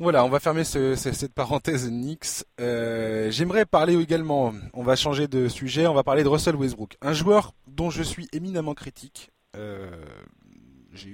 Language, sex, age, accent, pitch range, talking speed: French, male, 20-39, French, 115-150 Hz, 170 wpm